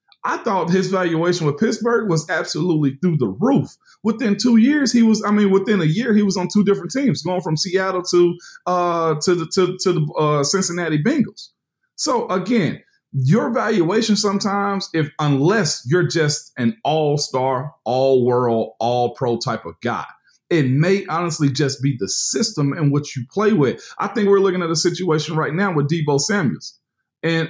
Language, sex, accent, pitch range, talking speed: English, male, American, 145-195 Hz, 175 wpm